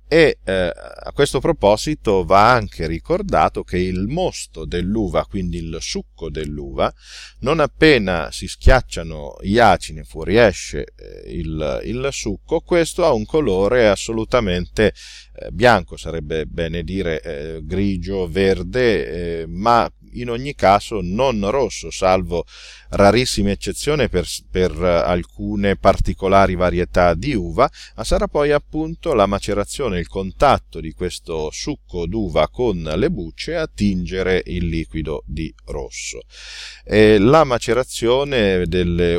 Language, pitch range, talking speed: Italian, 85-110 Hz, 125 wpm